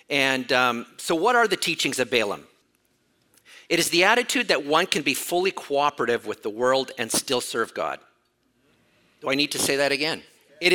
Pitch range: 150-215 Hz